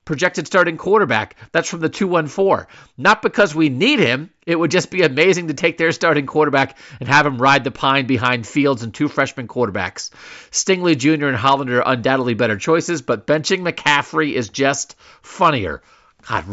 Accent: American